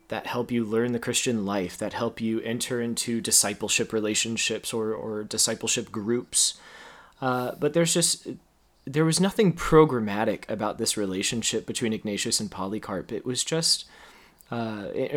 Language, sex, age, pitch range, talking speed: English, male, 20-39, 105-130 Hz, 145 wpm